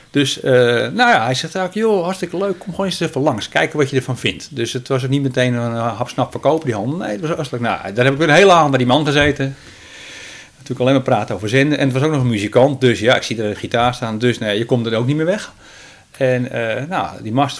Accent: Dutch